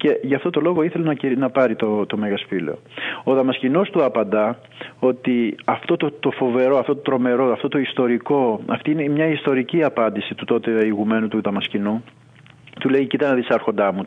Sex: male